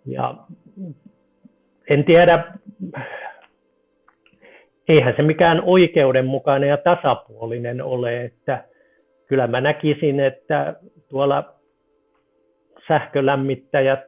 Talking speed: 70 wpm